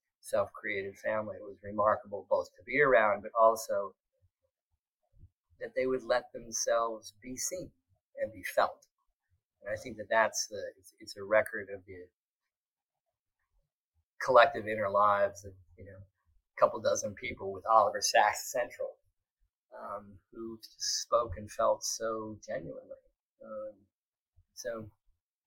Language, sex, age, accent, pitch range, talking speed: English, male, 30-49, American, 100-135 Hz, 130 wpm